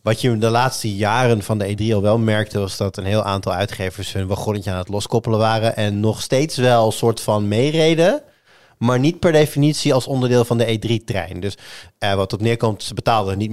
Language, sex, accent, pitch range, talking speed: Dutch, male, Dutch, 100-120 Hz, 215 wpm